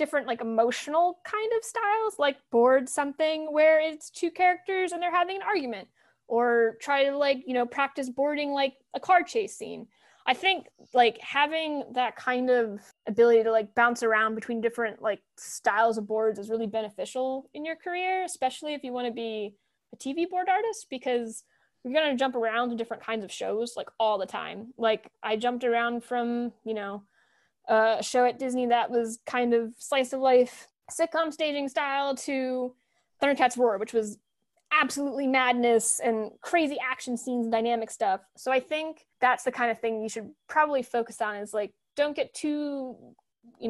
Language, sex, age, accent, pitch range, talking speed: English, female, 20-39, American, 225-285 Hz, 180 wpm